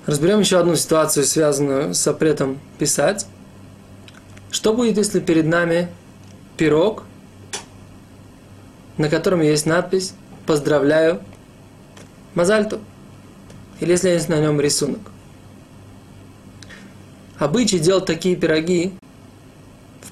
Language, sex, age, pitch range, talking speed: Russian, male, 20-39, 140-180 Hz, 90 wpm